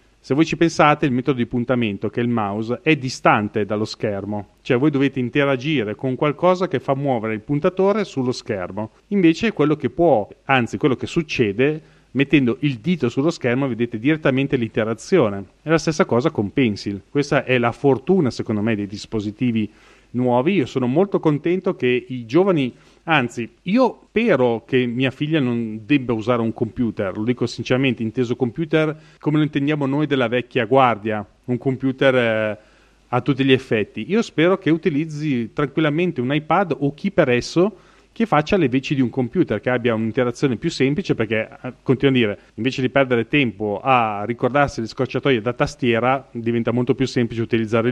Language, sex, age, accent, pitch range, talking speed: Italian, male, 30-49, native, 115-150 Hz, 175 wpm